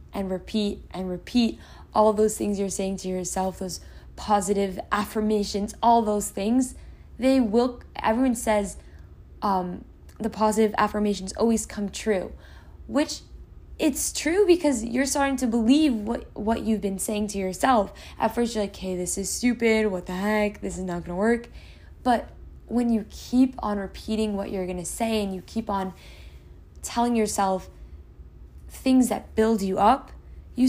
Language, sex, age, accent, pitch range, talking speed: English, female, 10-29, American, 185-230 Hz, 160 wpm